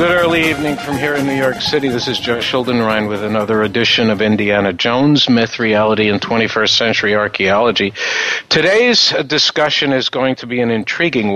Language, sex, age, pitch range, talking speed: English, male, 50-69, 110-130 Hz, 175 wpm